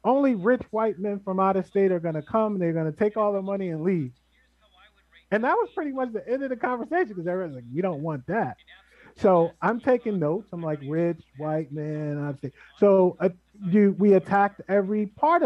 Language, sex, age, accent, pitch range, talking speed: English, male, 30-49, American, 155-195 Hz, 225 wpm